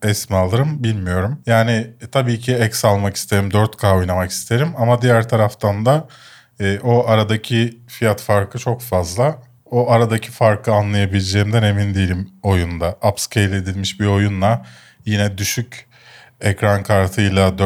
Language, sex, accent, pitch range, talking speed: Turkish, male, native, 95-125 Hz, 125 wpm